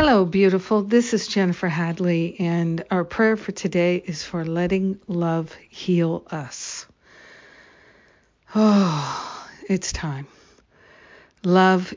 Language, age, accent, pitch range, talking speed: English, 60-79, American, 160-190 Hz, 105 wpm